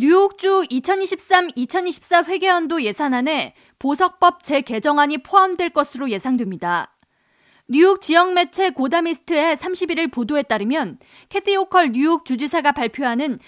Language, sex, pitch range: Korean, female, 250-350 Hz